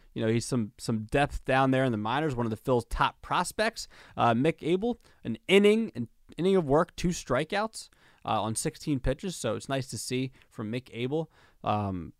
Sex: male